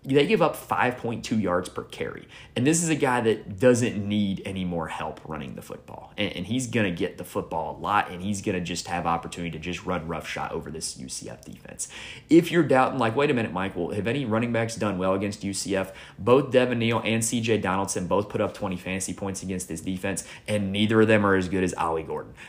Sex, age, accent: male, 30-49, American